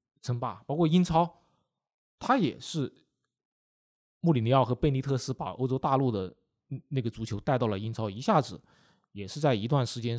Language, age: Chinese, 20-39